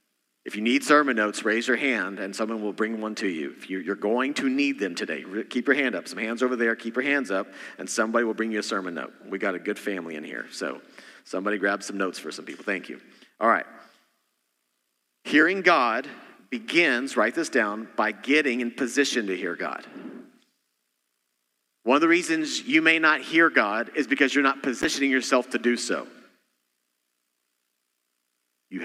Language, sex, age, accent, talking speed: English, male, 40-59, American, 195 wpm